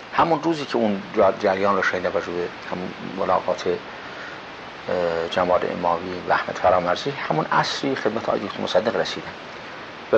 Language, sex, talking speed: English, male, 135 wpm